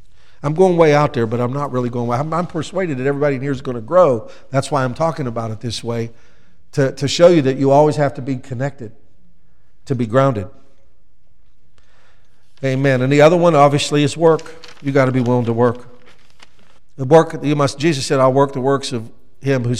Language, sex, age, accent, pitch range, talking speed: English, male, 50-69, American, 125-150 Hz, 220 wpm